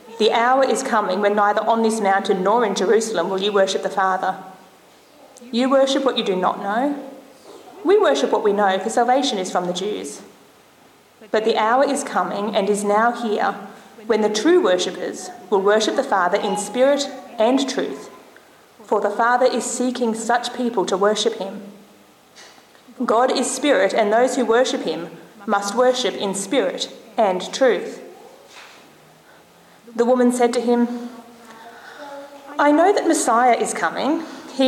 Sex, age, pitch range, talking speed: female, 30-49, 205-260 Hz, 160 wpm